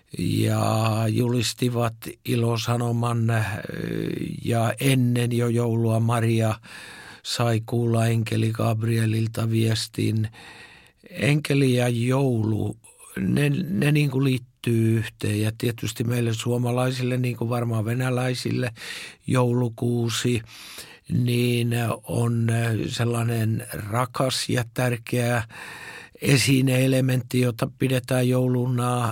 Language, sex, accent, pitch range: Finnish, male, native, 115-130 Hz